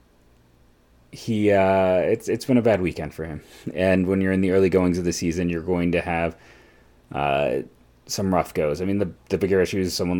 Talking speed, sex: 210 wpm, male